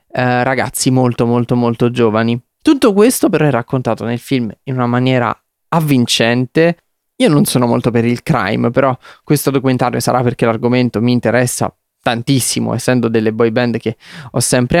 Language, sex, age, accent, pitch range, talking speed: Italian, male, 20-39, native, 115-135 Hz, 160 wpm